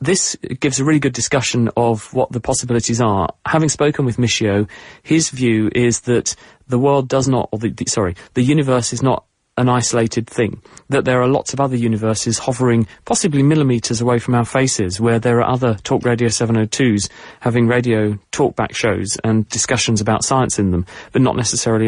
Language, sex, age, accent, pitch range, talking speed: English, male, 30-49, British, 110-135 Hz, 180 wpm